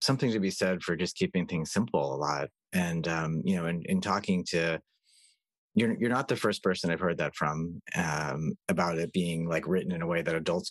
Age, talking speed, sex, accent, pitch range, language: 30-49, 225 wpm, male, American, 80-95 Hz, English